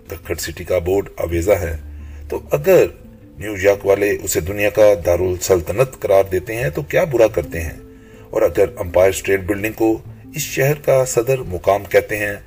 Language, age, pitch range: Urdu, 30-49, 90-125 Hz